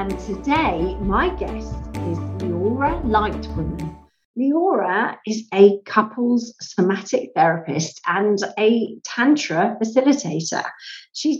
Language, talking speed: English, 95 wpm